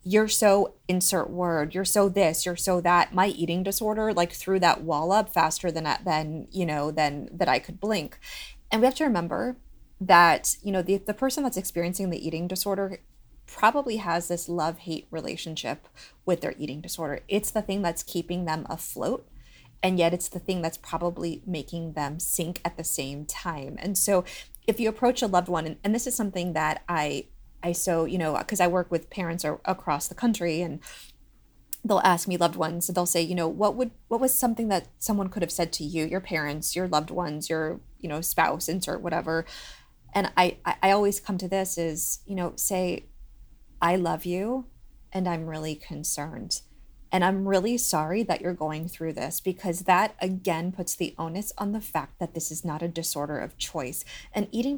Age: 20-39